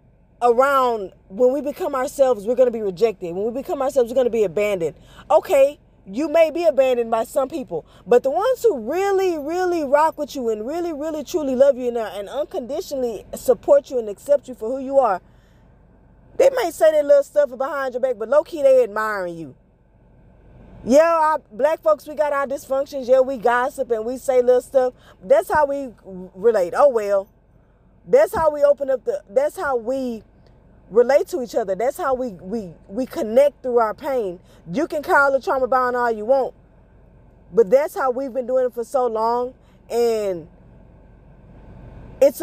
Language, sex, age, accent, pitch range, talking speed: English, female, 20-39, American, 240-305 Hz, 190 wpm